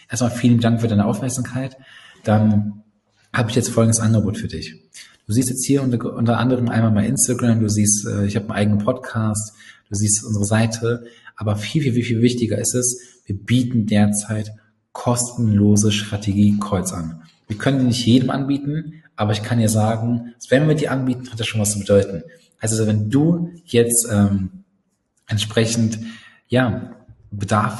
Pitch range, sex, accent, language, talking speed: 105-125 Hz, male, German, German, 165 wpm